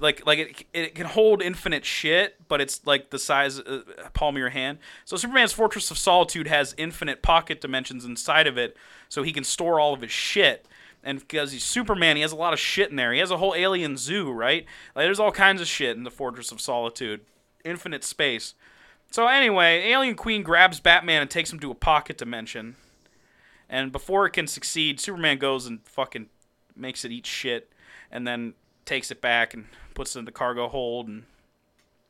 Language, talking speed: English, 205 wpm